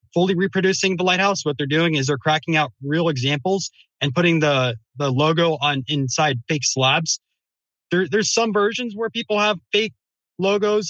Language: English